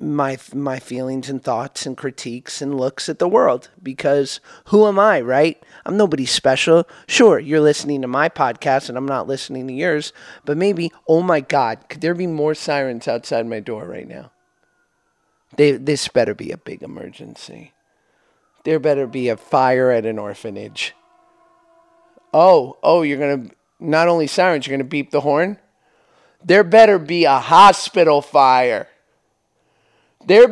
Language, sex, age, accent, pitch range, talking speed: English, male, 30-49, American, 135-200 Hz, 160 wpm